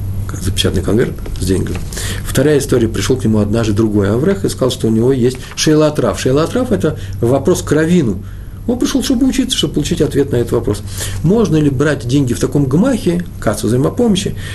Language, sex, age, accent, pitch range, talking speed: Russian, male, 50-69, native, 105-150 Hz, 185 wpm